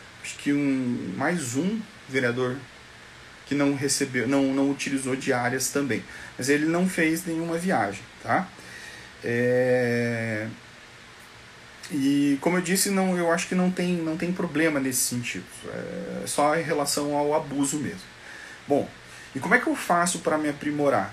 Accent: Brazilian